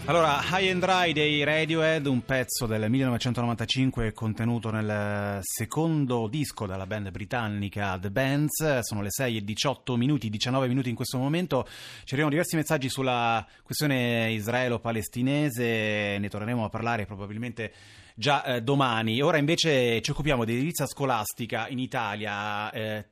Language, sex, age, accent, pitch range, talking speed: Italian, male, 30-49, native, 105-130 Hz, 145 wpm